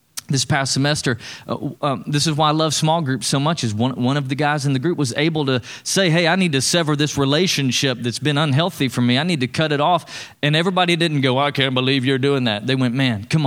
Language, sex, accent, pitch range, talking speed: English, male, American, 125-160 Hz, 265 wpm